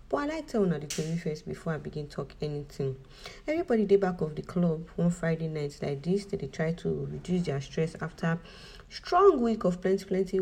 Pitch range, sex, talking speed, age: 155-195 Hz, female, 220 wpm, 40-59